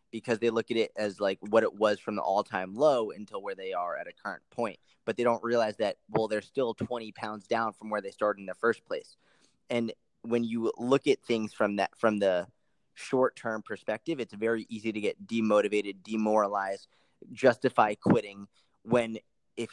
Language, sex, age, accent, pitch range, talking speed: English, male, 20-39, American, 105-115 Hz, 195 wpm